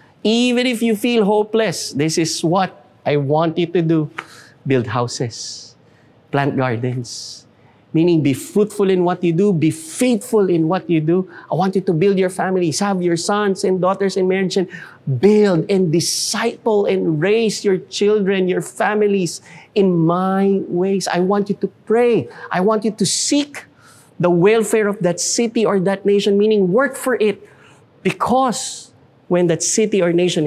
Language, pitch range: English, 160-200 Hz